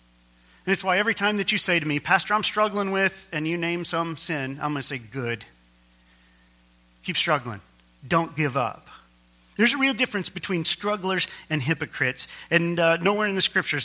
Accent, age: American, 40-59